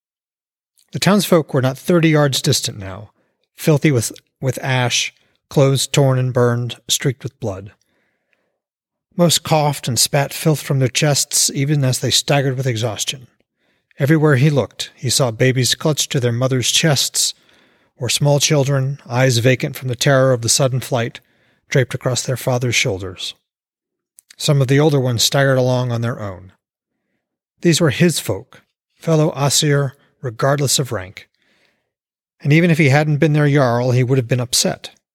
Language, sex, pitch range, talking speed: English, male, 120-145 Hz, 160 wpm